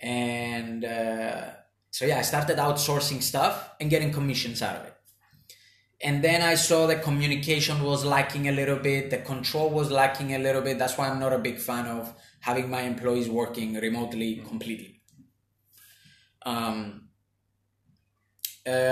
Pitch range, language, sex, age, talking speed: 115-145 Hz, English, male, 20-39, 150 wpm